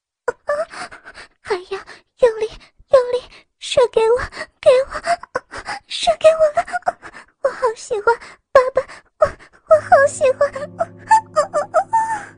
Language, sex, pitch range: Chinese, male, 270-345 Hz